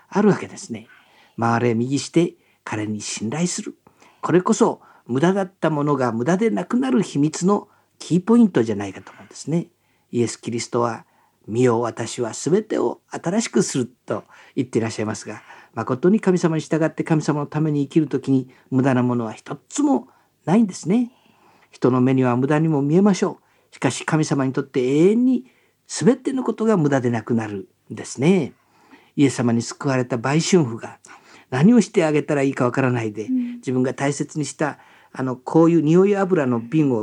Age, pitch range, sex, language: 50-69, 125-185 Hz, male, Japanese